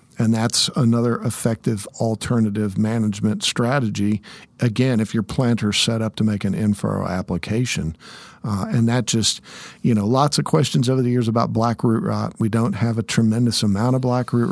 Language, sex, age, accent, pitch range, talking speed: English, male, 50-69, American, 105-120 Hz, 180 wpm